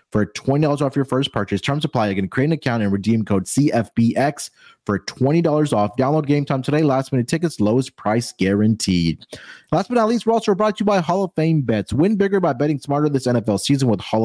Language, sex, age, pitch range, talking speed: English, male, 30-49, 105-145 Hz, 225 wpm